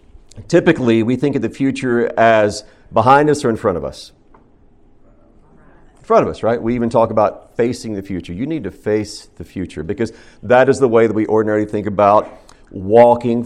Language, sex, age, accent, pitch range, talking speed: English, male, 40-59, American, 100-135 Hz, 190 wpm